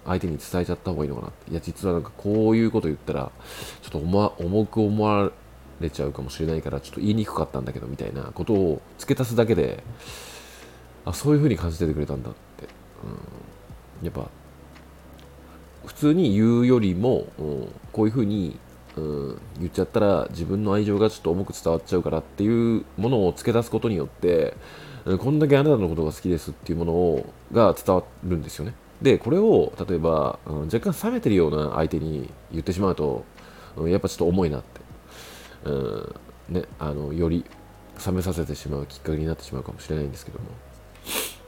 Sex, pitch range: male, 75-100 Hz